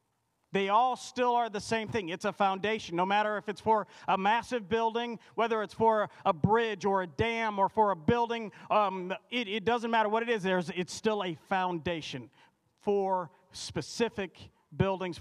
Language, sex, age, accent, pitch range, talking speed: English, male, 40-59, American, 170-210 Hz, 180 wpm